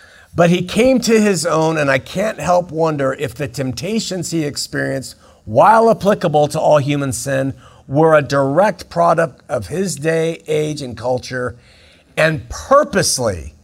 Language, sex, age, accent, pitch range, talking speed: English, male, 50-69, American, 120-155 Hz, 150 wpm